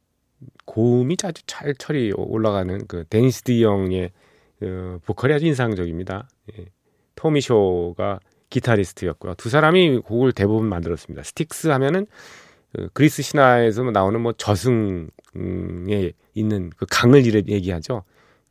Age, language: 40-59, Korean